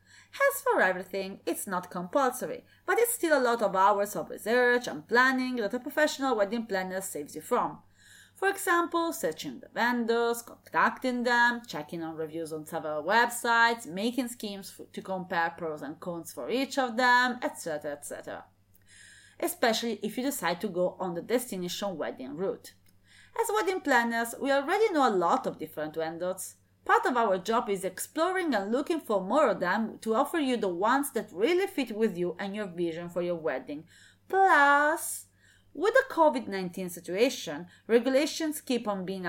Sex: female